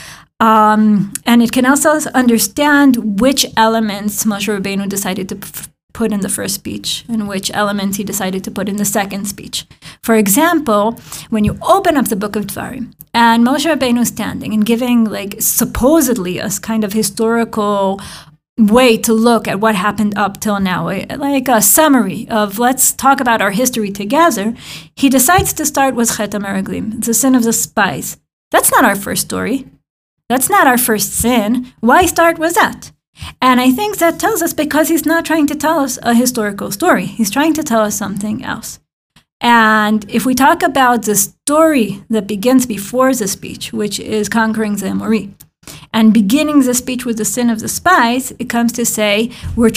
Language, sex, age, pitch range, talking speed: English, female, 30-49, 205-255 Hz, 180 wpm